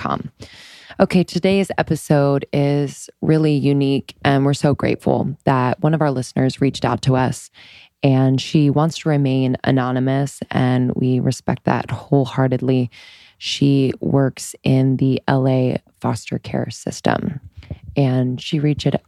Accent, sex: American, female